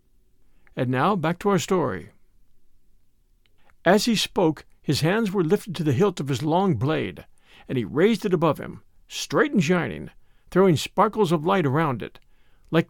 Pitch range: 140-200 Hz